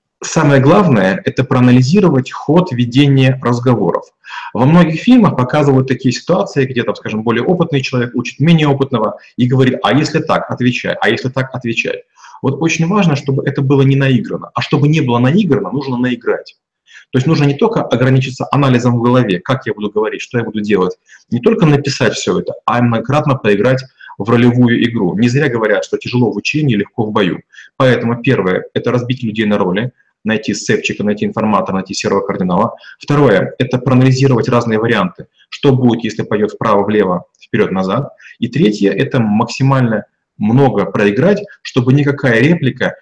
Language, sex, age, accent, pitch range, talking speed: Russian, male, 30-49, native, 120-145 Hz, 165 wpm